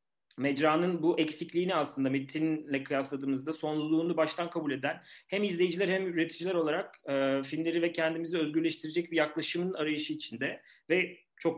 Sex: male